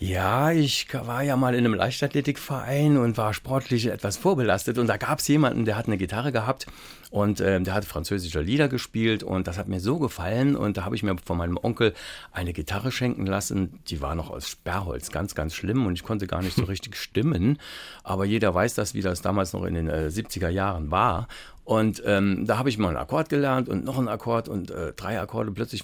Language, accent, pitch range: German, German, 95-130 Hz